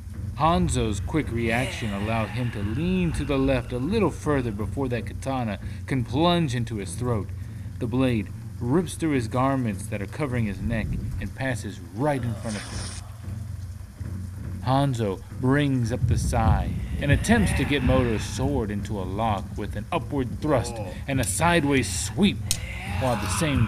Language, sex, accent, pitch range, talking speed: English, male, American, 100-130 Hz, 165 wpm